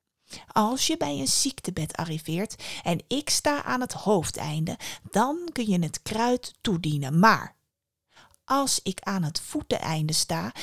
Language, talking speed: Dutch, 140 wpm